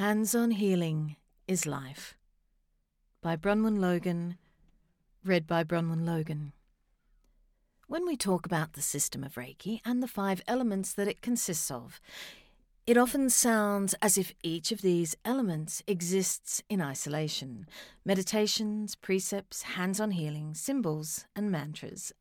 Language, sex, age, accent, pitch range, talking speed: English, female, 40-59, Australian, 160-215 Hz, 125 wpm